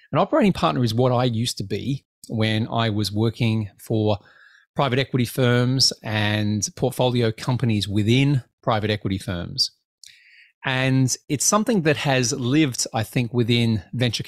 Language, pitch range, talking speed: English, 105-130 Hz, 145 wpm